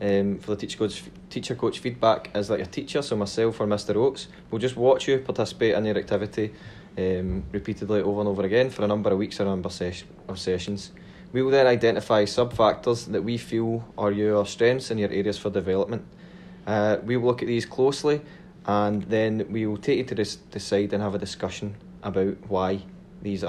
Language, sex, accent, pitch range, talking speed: English, male, British, 100-125 Hz, 210 wpm